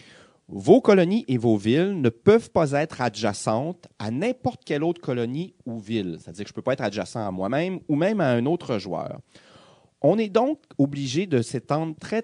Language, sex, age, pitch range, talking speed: French, male, 30-49, 110-180 Hz, 195 wpm